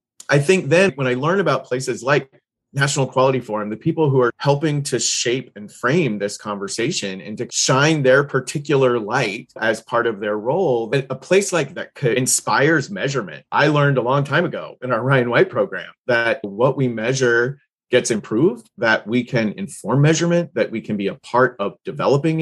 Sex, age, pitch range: male, 30-49, 120-150 Hz